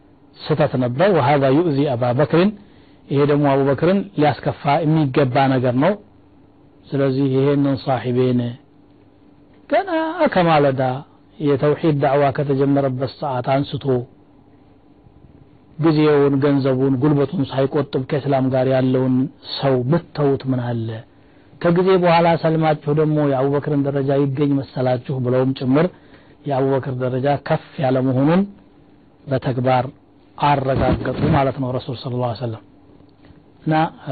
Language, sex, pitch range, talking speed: Amharic, male, 130-150 Hz, 105 wpm